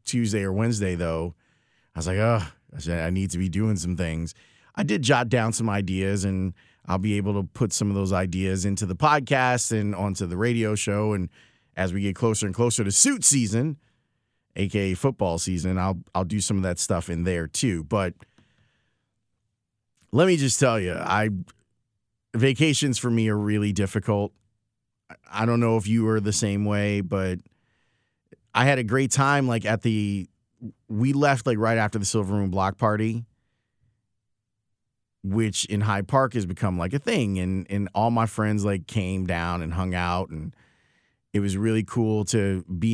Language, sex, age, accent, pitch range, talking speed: English, male, 30-49, American, 95-115 Hz, 185 wpm